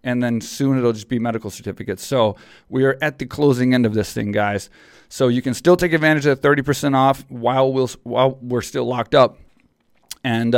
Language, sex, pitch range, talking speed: English, male, 120-135 Hz, 210 wpm